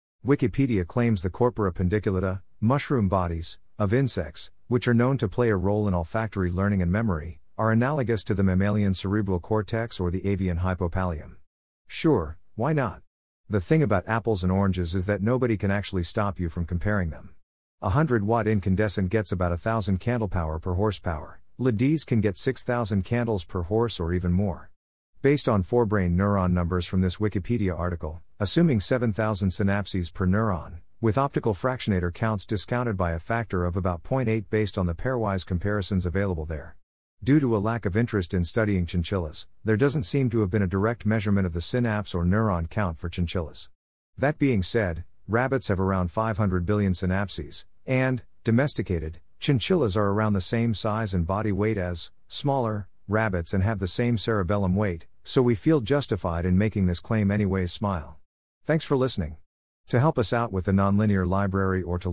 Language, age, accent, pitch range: English, 50-69, American, 90-115 Hz